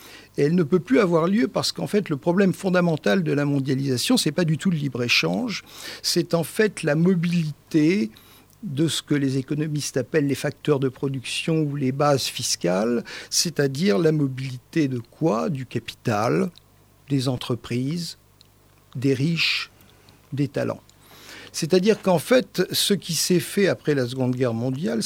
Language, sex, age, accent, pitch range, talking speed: French, male, 50-69, French, 135-185 Hz, 160 wpm